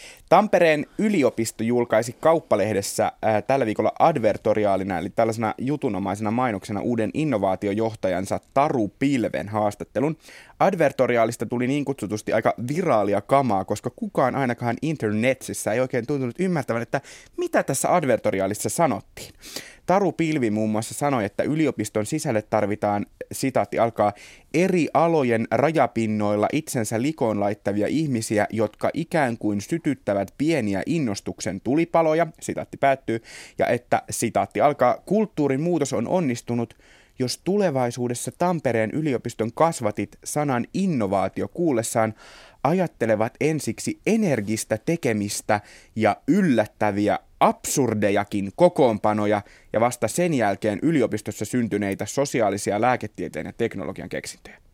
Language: Finnish